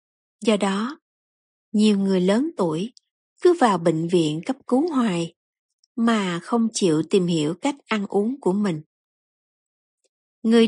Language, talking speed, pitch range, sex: Vietnamese, 135 wpm, 190-255 Hz, female